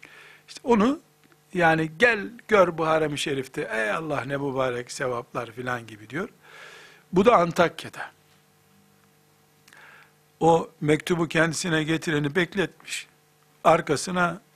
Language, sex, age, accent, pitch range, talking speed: Turkish, male, 60-79, native, 130-170 Hz, 105 wpm